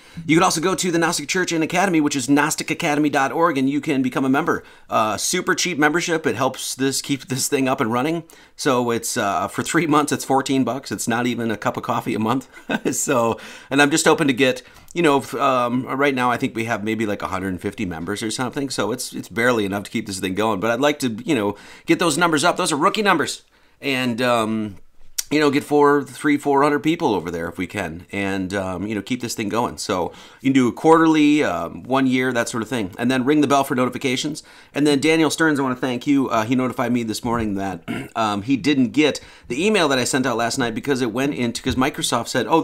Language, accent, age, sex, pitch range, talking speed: English, American, 30-49, male, 110-150 Hz, 245 wpm